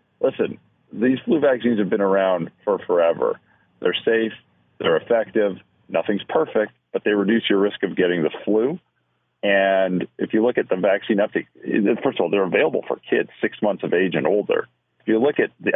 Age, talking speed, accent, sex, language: 40-59, 190 wpm, American, male, English